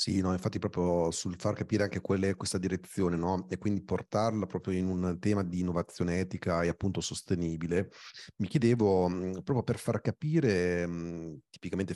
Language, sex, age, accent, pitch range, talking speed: Italian, male, 40-59, native, 85-110 Hz, 165 wpm